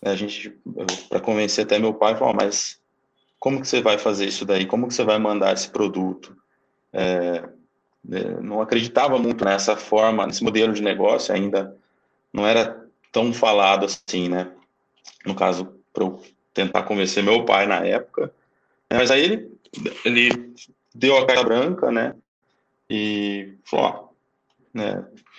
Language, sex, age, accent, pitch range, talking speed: Portuguese, male, 20-39, Brazilian, 100-120 Hz, 150 wpm